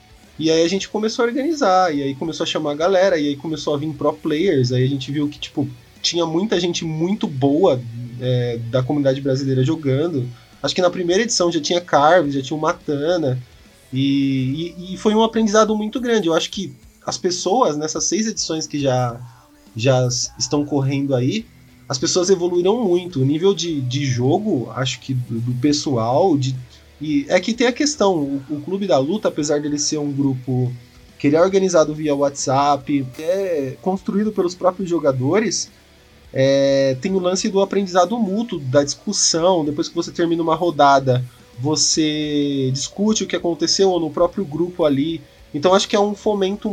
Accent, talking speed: Brazilian, 185 wpm